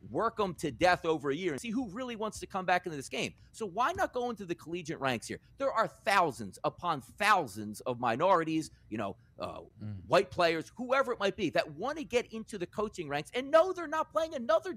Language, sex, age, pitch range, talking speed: English, male, 40-59, 170-255 Hz, 230 wpm